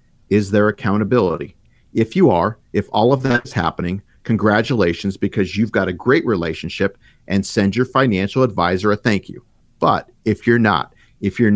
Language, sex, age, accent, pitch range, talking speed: English, male, 50-69, American, 100-125 Hz, 170 wpm